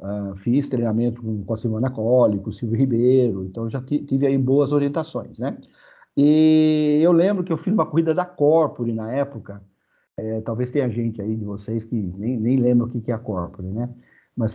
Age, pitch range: 50-69, 120-170 Hz